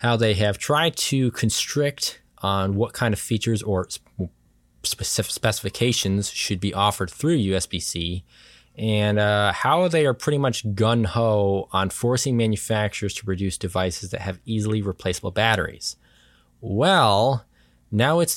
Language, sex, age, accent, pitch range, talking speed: English, male, 20-39, American, 95-125 Hz, 130 wpm